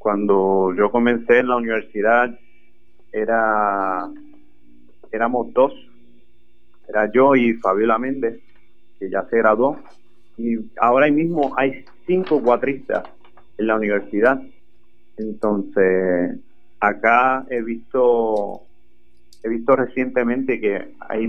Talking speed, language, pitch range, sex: 100 wpm, Spanish, 110-130 Hz, male